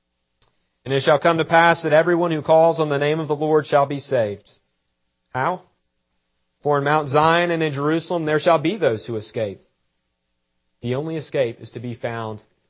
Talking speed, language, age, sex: 190 wpm, English, 40-59, male